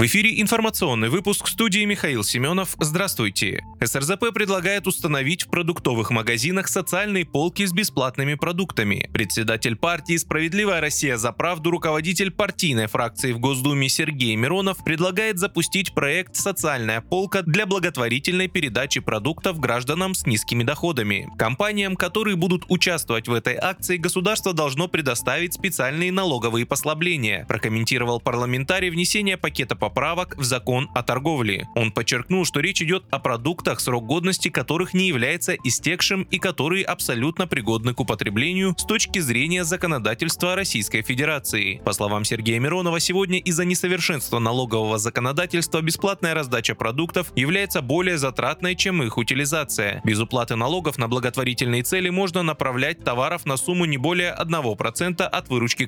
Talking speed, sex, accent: 135 wpm, male, native